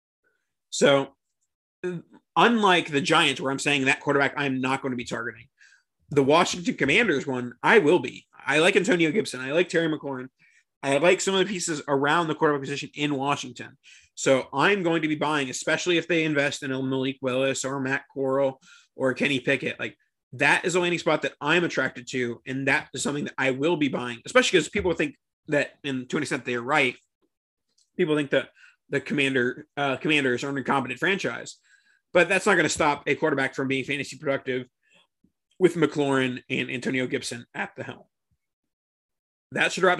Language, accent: English, American